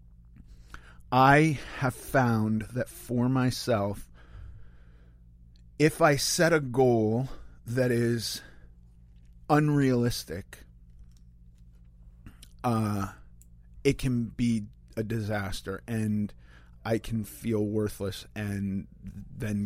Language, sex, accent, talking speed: English, male, American, 80 wpm